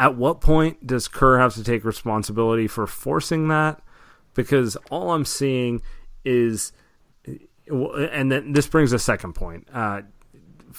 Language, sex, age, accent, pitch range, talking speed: English, male, 30-49, American, 105-130 Hz, 140 wpm